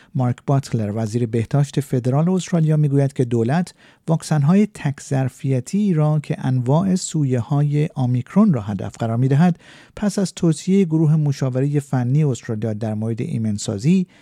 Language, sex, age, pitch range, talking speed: Persian, male, 50-69, 125-165 Hz, 125 wpm